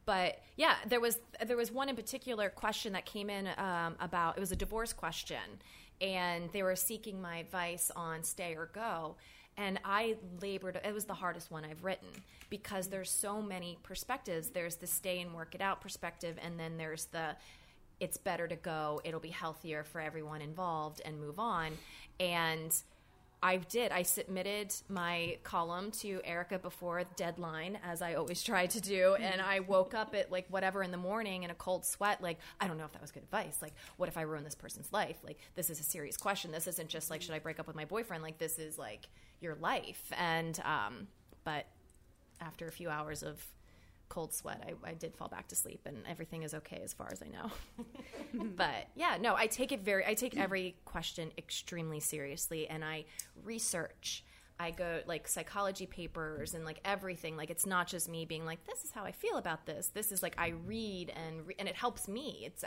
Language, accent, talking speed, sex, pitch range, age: English, American, 210 wpm, female, 160-195 Hz, 30-49